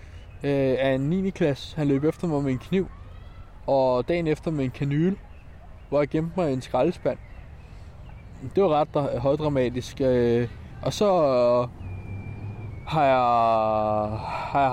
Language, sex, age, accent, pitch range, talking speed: Danish, male, 20-39, native, 110-145 Hz, 140 wpm